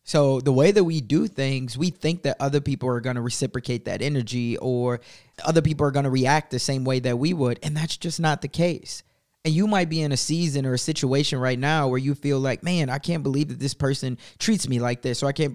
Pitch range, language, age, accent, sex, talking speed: 130-160 Hz, English, 20-39, American, male, 260 wpm